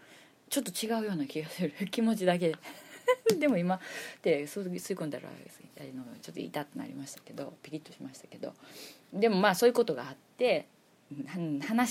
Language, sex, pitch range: Japanese, female, 160-265 Hz